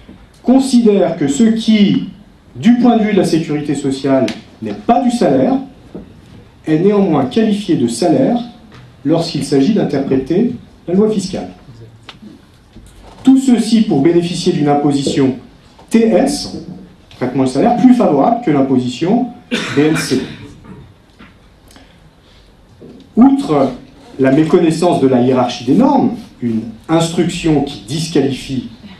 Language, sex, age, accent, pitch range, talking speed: French, male, 40-59, French, 140-220 Hz, 110 wpm